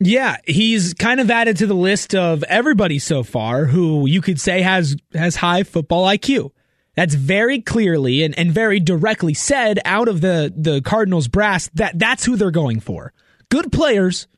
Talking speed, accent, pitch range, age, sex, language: 180 wpm, American, 160-235 Hz, 30-49, male, English